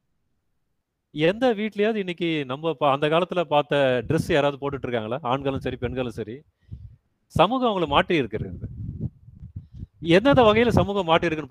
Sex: male